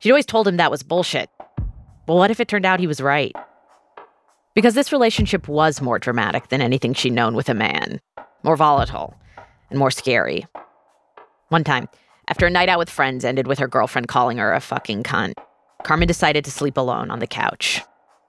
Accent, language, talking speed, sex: American, English, 195 wpm, female